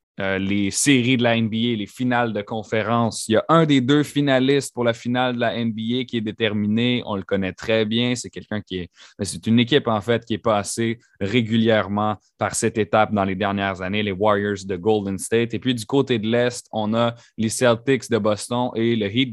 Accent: Canadian